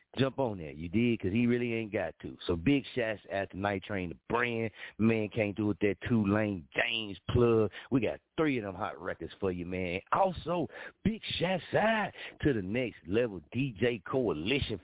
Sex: male